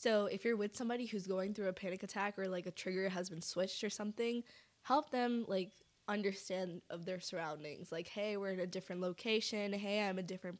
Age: 10-29